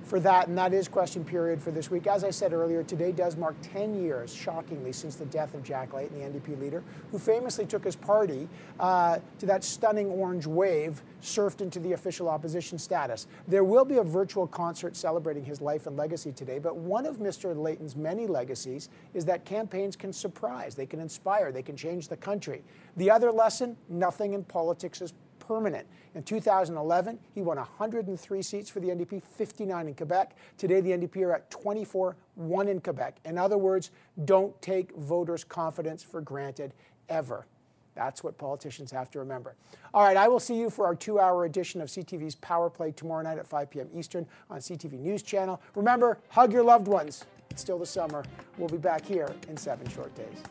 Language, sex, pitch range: English, male, 160-195 Hz